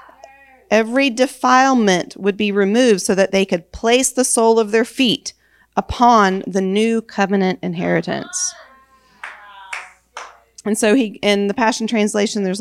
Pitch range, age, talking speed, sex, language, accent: 190-235 Hz, 40-59, 135 wpm, female, English, American